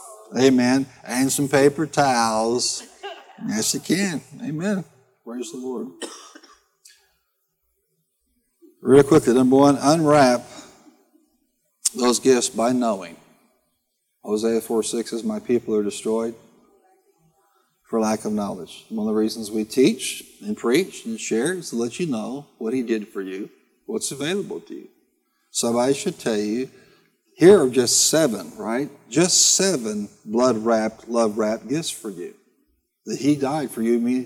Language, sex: English, male